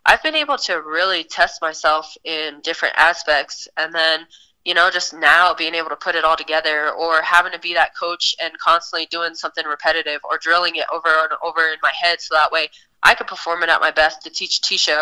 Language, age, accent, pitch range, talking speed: English, 20-39, American, 155-175 Hz, 225 wpm